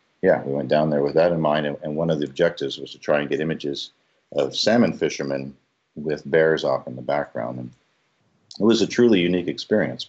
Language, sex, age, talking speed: English, male, 50-69, 215 wpm